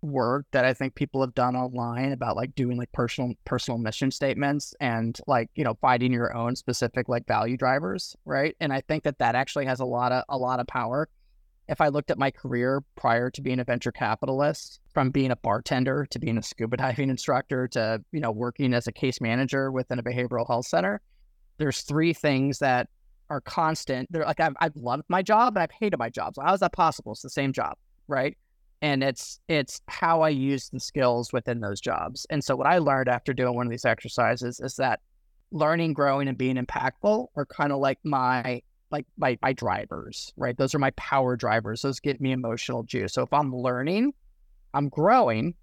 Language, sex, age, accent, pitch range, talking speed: English, male, 30-49, American, 120-145 Hz, 210 wpm